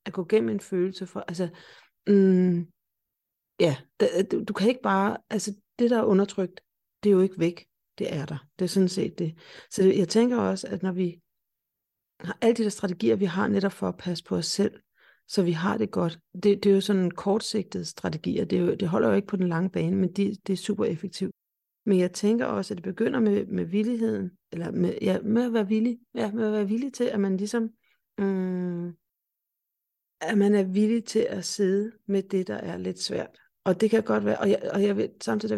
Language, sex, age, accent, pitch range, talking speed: Danish, female, 40-59, native, 180-210 Hz, 225 wpm